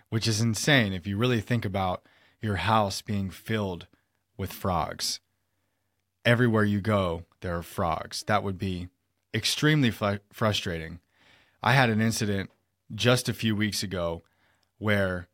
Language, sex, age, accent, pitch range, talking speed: English, male, 20-39, American, 95-110 Hz, 135 wpm